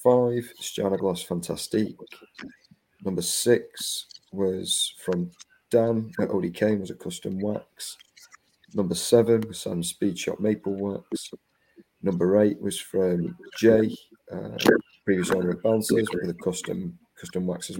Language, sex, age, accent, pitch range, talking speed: English, male, 30-49, British, 90-105 Hz, 120 wpm